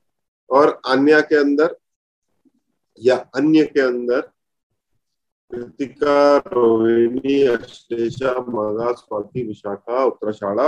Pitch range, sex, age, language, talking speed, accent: 115-150 Hz, male, 40-59, Hindi, 60 wpm, native